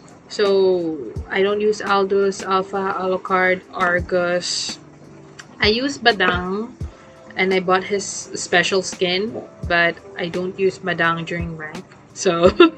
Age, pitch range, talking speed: 20-39, 180-215 Hz, 115 wpm